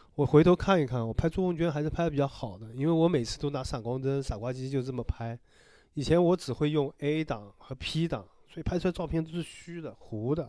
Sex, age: male, 20-39